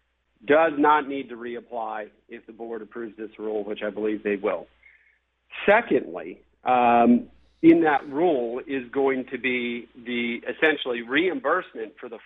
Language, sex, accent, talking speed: English, male, American, 145 wpm